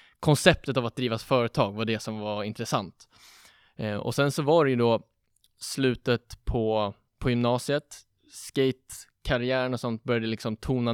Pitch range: 110-125 Hz